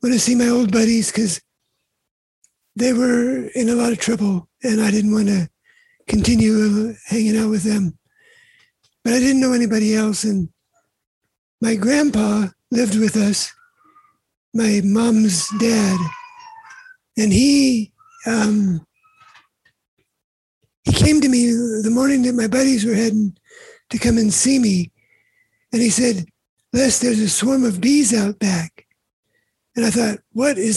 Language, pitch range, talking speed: English, 215-265 Hz, 145 wpm